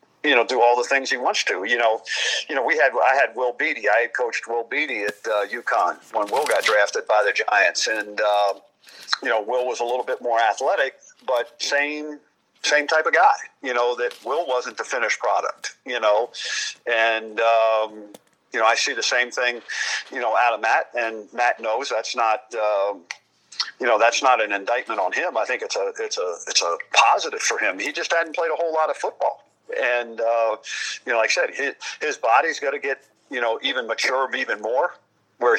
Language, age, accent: English, 50-69, American